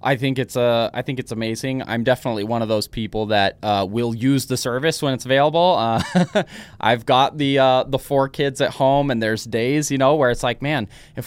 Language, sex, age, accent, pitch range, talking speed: English, male, 20-39, American, 110-135 Hz, 235 wpm